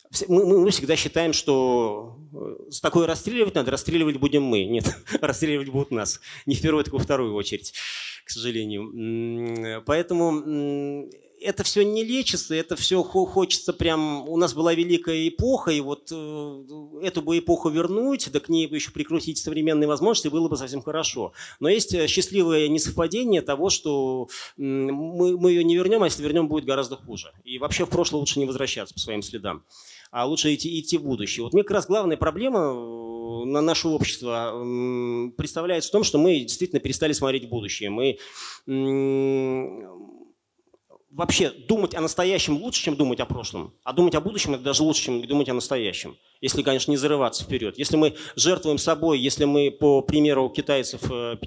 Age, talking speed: 30-49, 170 wpm